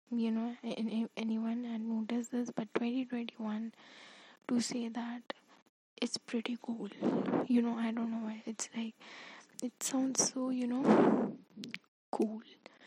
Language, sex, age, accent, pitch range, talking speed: English, female, 10-29, Indian, 215-250 Hz, 150 wpm